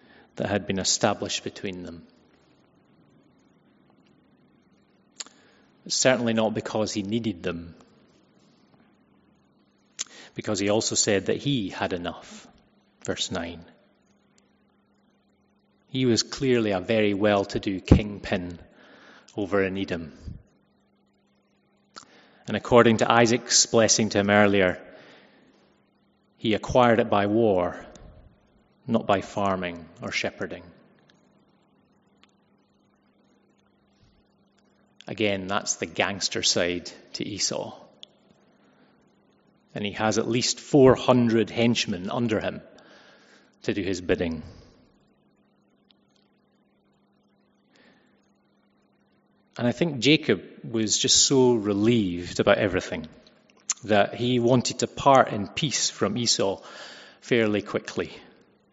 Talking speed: 95 wpm